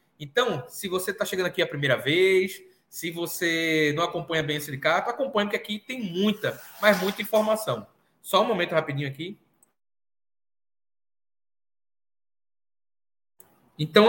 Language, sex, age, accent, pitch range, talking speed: Portuguese, male, 20-39, Brazilian, 150-185 Hz, 130 wpm